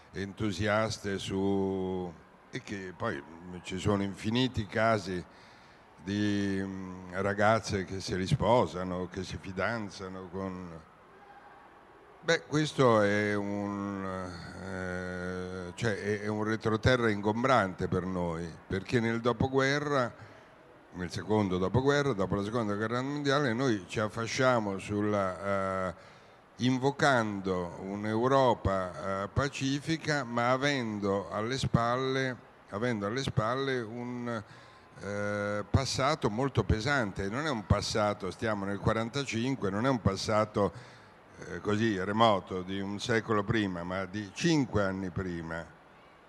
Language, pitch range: Italian, 95-125 Hz